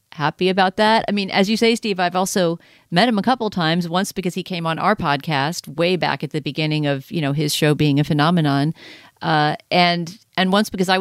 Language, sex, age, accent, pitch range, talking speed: English, female, 40-59, American, 155-195 Hz, 230 wpm